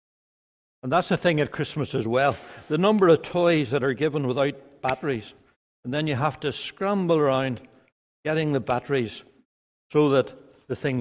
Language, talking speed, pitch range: English, 170 wpm, 125-160 Hz